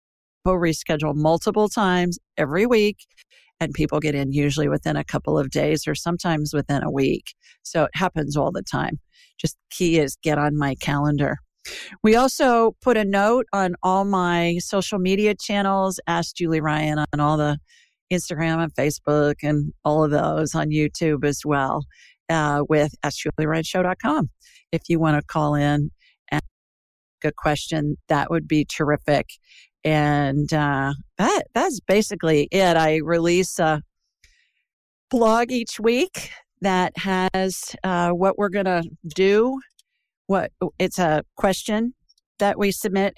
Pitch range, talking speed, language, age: 155-200 Hz, 150 wpm, English, 50-69